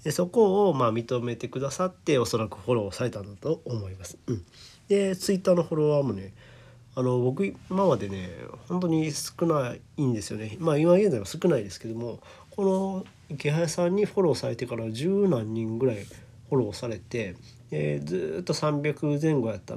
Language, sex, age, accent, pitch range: Japanese, male, 40-59, native, 110-145 Hz